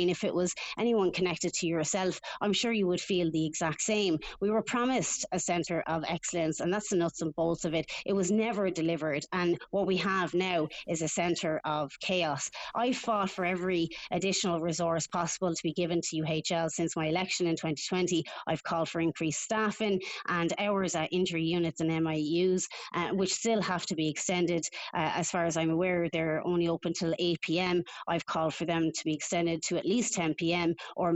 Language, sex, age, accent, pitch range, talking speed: English, female, 30-49, Irish, 165-190 Hz, 200 wpm